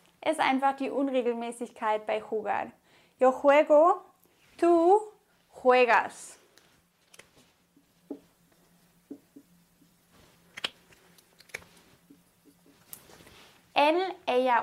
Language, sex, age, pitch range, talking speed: English, female, 20-39, 250-315 Hz, 50 wpm